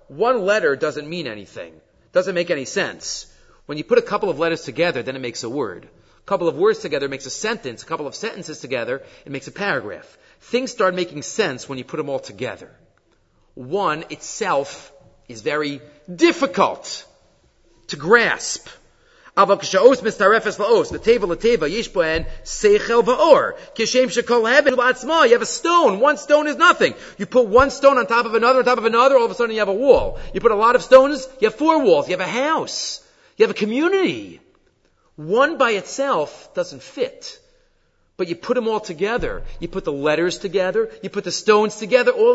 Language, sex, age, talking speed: English, male, 40-59, 175 wpm